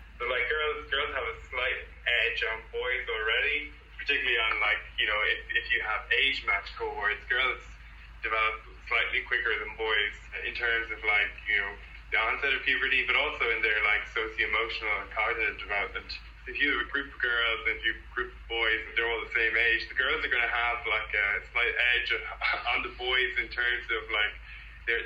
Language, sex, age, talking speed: English, male, 20-39, 205 wpm